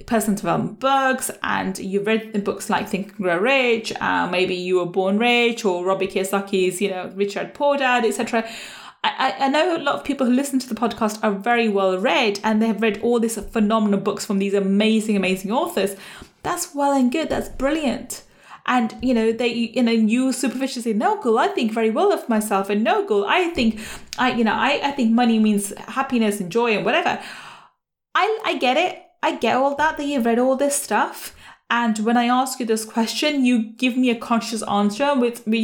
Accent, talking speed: British, 215 wpm